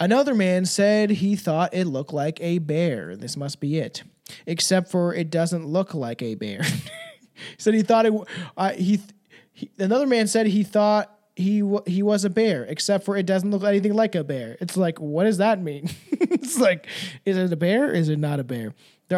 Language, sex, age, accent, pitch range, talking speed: English, male, 20-39, American, 160-210 Hz, 220 wpm